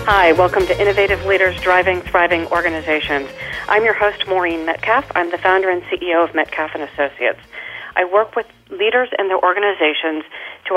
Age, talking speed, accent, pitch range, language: 40-59, 160 wpm, American, 160-190 Hz, English